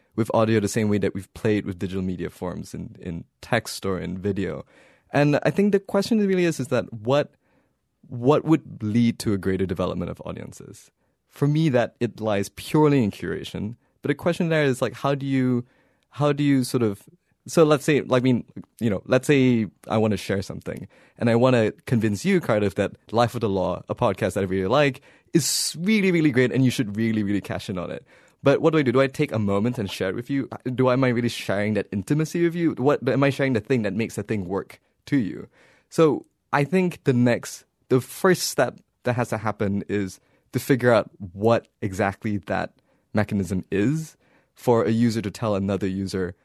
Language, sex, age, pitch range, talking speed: English, male, 20-39, 100-140 Hz, 220 wpm